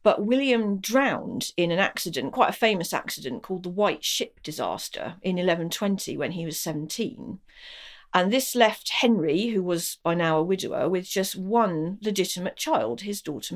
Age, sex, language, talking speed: 50-69, female, English, 170 wpm